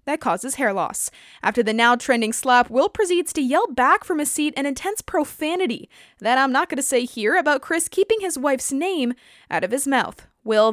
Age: 20-39